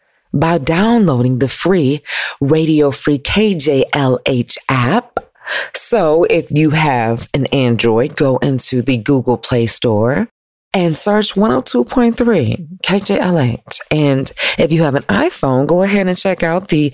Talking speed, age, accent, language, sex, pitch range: 125 wpm, 40-59, American, English, female, 130-200 Hz